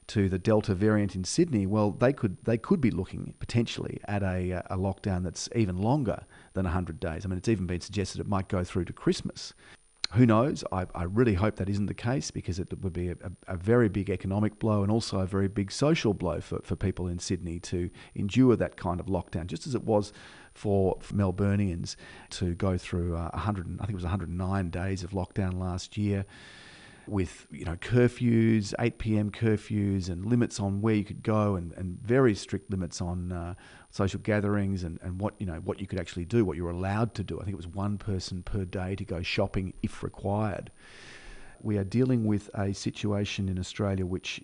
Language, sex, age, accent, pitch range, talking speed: English, male, 40-59, Australian, 90-110 Hz, 210 wpm